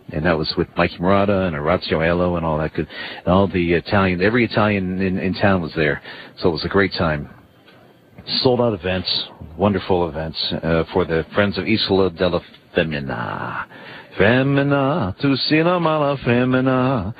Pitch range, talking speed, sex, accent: 85-115 Hz, 170 wpm, male, American